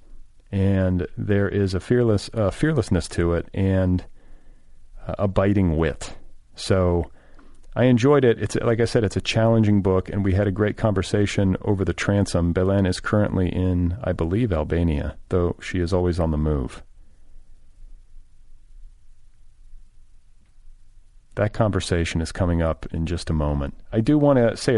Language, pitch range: English, 90-105 Hz